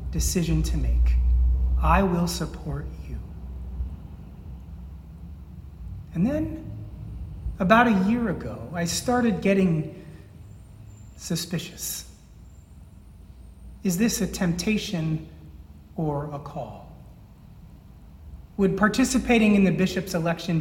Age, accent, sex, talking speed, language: 40-59, American, male, 85 wpm, English